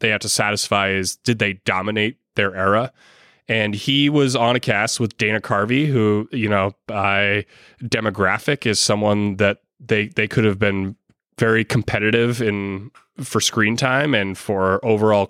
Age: 20-39